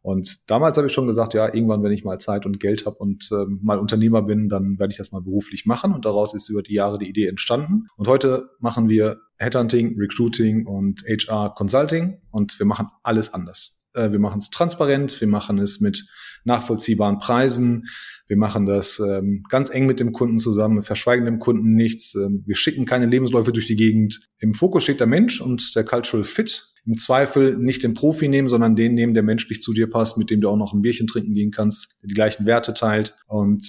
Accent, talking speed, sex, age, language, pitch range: German, 215 wpm, male, 30-49, German, 105-120 Hz